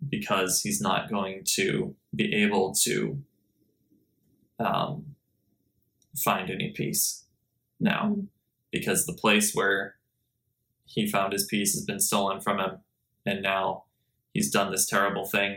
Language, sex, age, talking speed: English, male, 20-39, 125 wpm